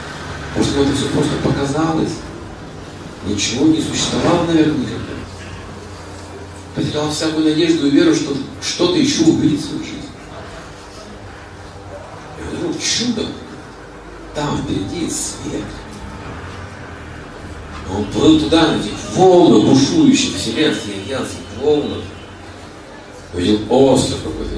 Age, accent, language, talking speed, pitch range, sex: 50-69, native, Russian, 105 wpm, 100-105 Hz, male